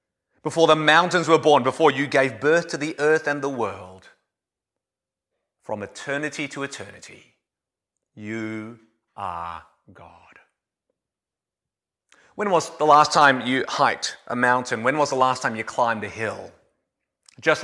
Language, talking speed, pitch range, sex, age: English, 140 wpm, 125-170 Hz, male, 30-49